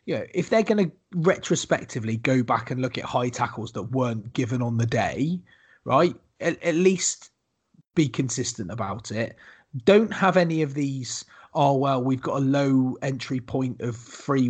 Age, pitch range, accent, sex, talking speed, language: 30-49, 120-150 Hz, British, male, 180 wpm, English